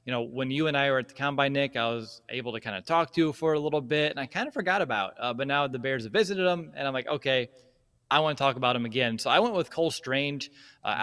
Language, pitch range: English, 120-145 Hz